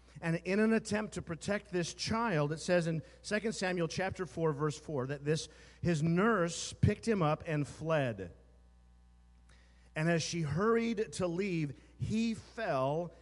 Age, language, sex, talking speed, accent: 40-59, English, male, 155 wpm, American